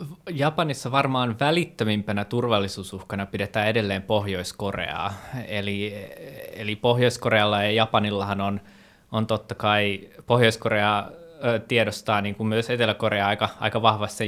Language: Finnish